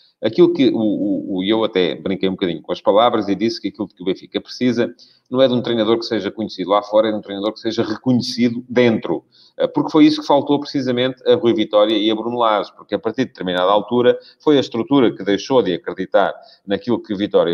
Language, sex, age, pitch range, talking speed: Portuguese, male, 40-59, 100-140 Hz, 235 wpm